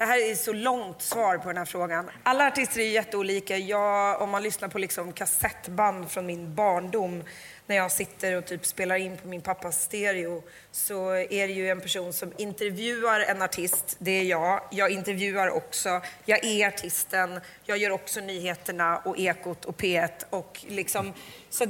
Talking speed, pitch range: 175 wpm, 180-205 Hz